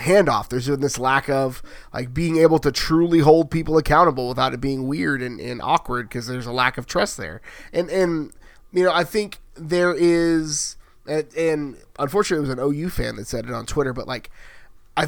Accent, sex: American, male